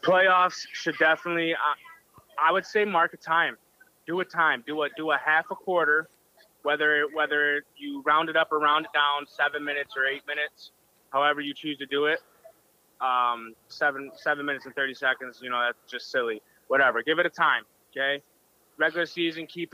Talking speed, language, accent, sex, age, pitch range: 190 wpm, English, American, male, 20-39, 145-170 Hz